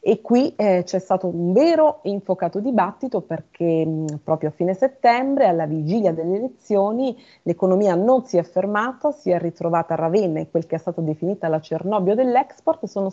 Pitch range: 170-220 Hz